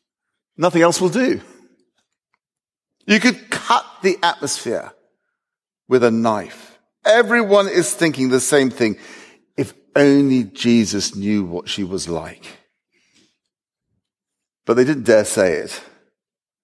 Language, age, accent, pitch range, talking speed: English, 50-69, British, 125-185 Hz, 115 wpm